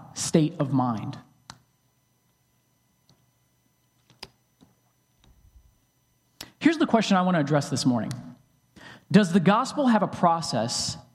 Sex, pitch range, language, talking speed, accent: male, 160-215 Hz, English, 95 wpm, American